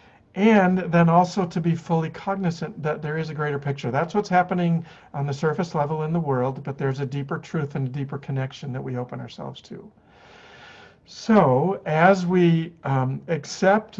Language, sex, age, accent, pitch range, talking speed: English, male, 50-69, American, 135-170 Hz, 180 wpm